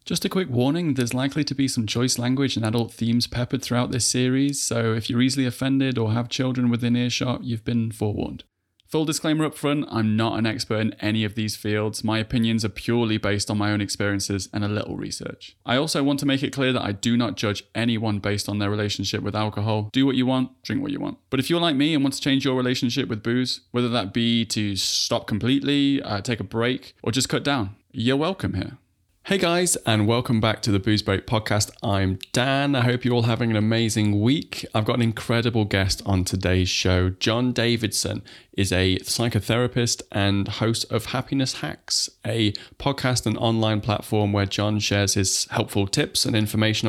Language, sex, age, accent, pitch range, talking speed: English, male, 20-39, British, 105-130 Hz, 210 wpm